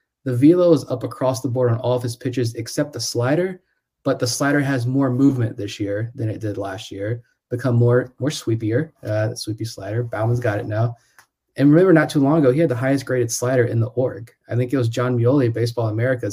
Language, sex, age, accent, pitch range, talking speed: English, male, 20-39, American, 115-135 Hz, 235 wpm